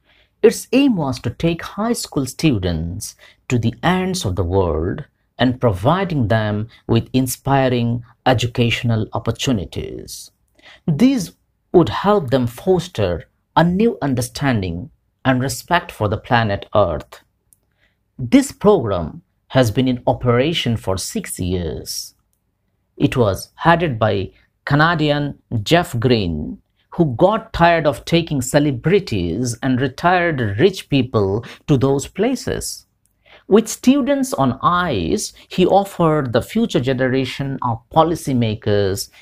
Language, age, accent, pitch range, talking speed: English, 50-69, Indian, 110-165 Hz, 115 wpm